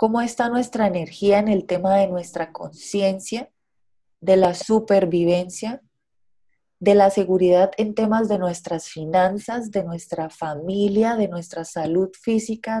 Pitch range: 175-225 Hz